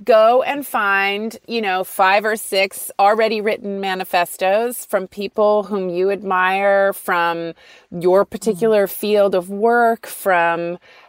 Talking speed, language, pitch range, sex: 125 wpm, English, 185-235 Hz, female